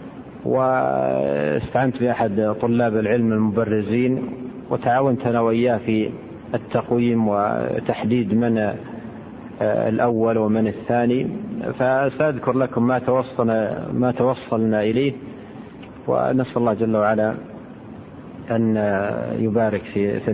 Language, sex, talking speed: Arabic, male, 85 wpm